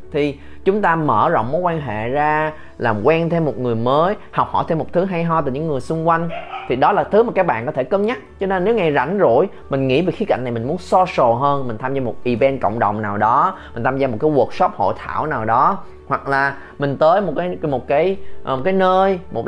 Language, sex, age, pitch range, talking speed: Vietnamese, male, 20-39, 120-175 Hz, 260 wpm